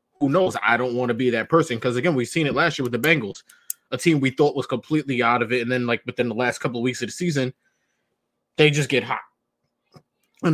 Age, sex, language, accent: 20-39, male, English, American